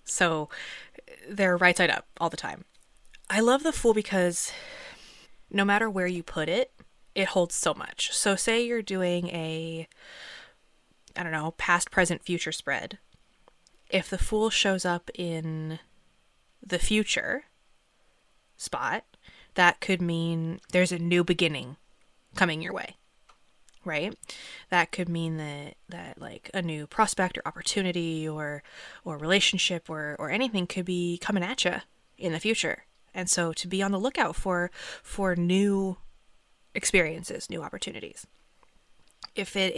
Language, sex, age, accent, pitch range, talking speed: English, female, 20-39, American, 165-195 Hz, 145 wpm